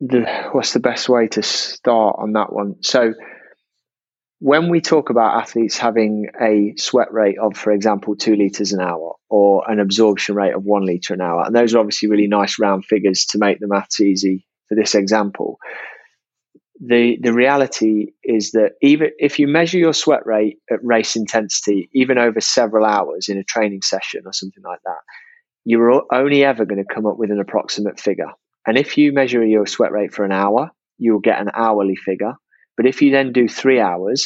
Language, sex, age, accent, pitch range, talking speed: English, male, 20-39, British, 105-120 Hz, 195 wpm